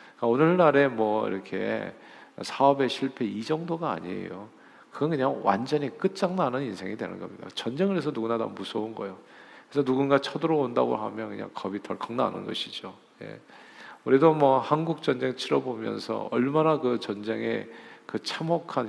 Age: 50-69